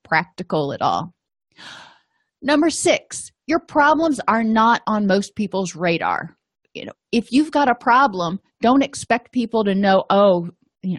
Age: 30-49